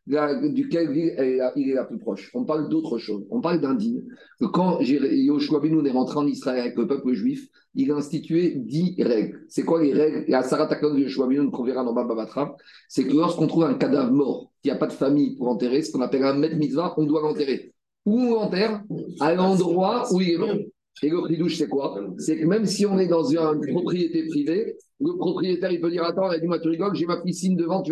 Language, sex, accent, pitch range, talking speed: French, male, French, 155-210 Hz, 230 wpm